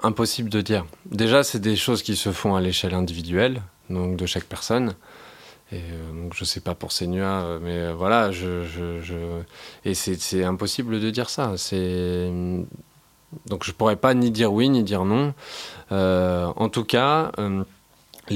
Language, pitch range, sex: French, 90-105 Hz, male